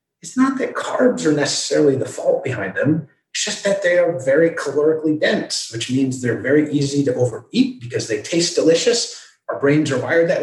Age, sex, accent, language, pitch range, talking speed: 30-49, male, American, English, 120-170 Hz, 195 wpm